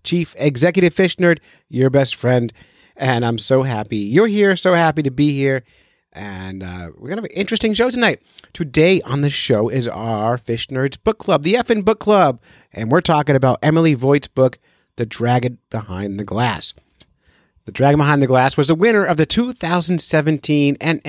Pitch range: 120-160 Hz